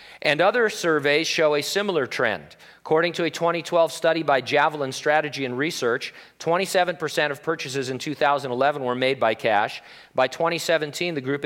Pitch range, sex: 125-150 Hz, male